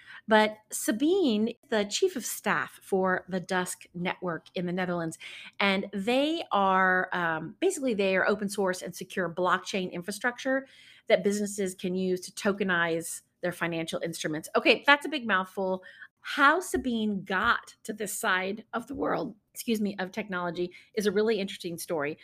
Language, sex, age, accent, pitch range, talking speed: English, female, 40-59, American, 180-245 Hz, 155 wpm